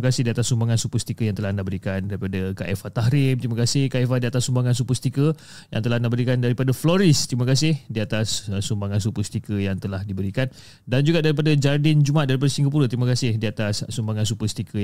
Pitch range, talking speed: 110-145 Hz, 200 wpm